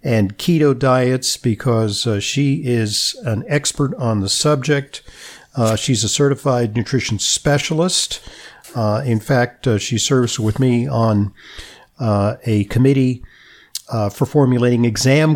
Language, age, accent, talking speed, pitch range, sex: English, 50-69, American, 135 wpm, 105-130 Hz, male